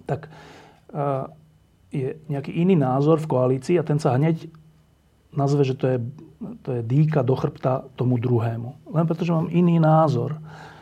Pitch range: 125-155 Hz